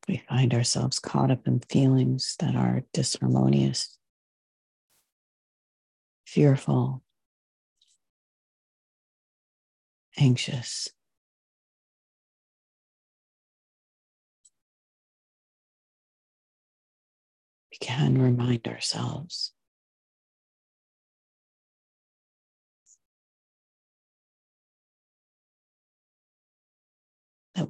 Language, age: English, 50-69